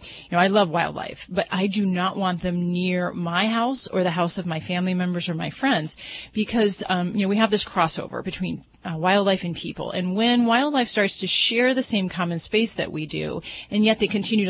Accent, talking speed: American, 225 wpm